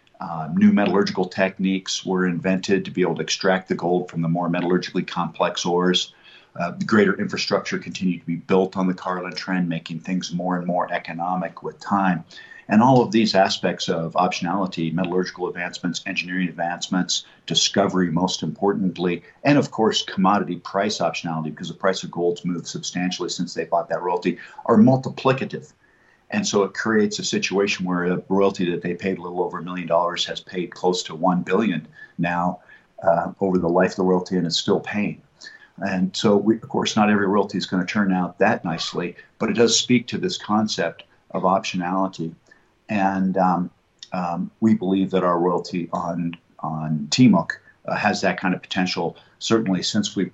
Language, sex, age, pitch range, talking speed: English, male, 50-69, 90-95 Hz, 180 wpm